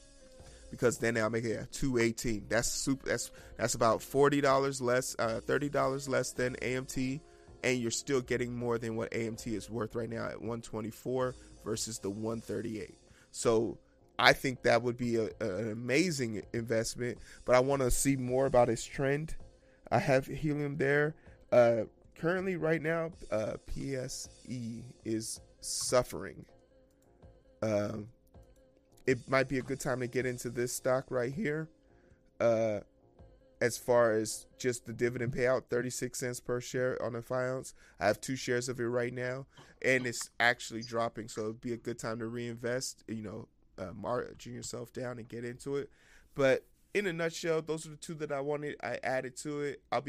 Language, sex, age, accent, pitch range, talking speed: English, male, 30-49, American, 115-130 Hz, 170 wpm